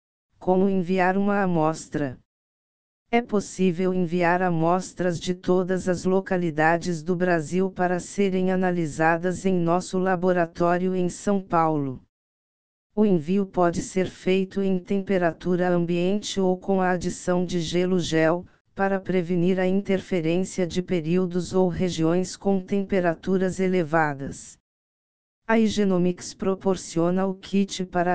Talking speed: 115 wpm